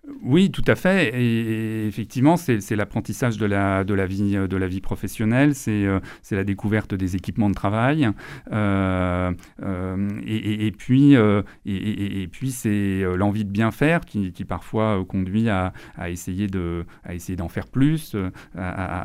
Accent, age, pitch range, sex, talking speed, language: French, 40-59, 95-115 Hz, male, 185 wpm, French